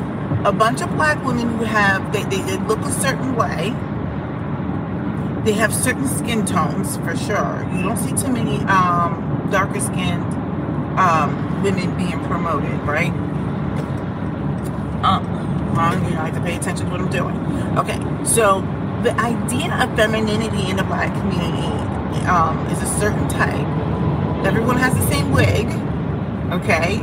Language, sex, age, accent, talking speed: English, female, 40-59, American, 155 wpm